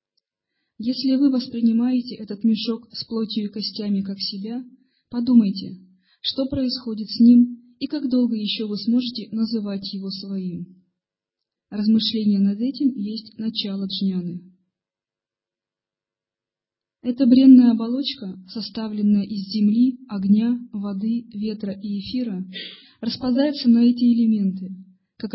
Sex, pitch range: female, 195-240 Hz